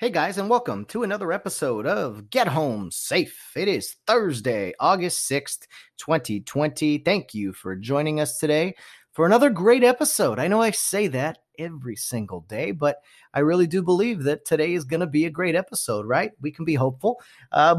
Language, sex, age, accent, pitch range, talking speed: English, male, 30-49, American, 125-170 Hz, 185 wpm